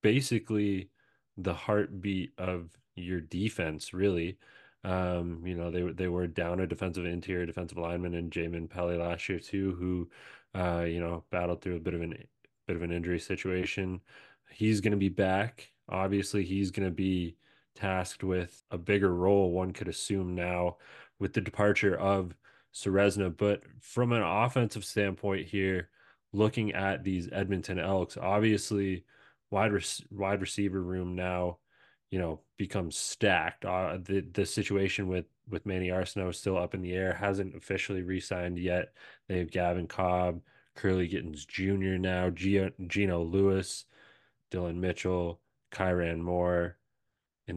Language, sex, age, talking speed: English, male, 20-39, 150 wpm